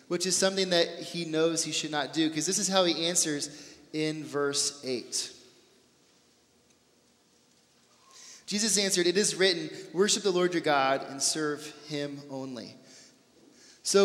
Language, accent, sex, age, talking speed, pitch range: English, American, male, 30-49, 145 wpm, 150-185 Hz